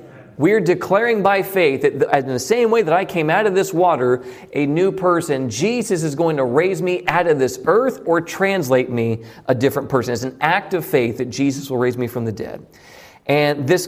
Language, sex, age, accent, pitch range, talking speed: English, male, 40-59, American, 130-190 Hz, 215 wpm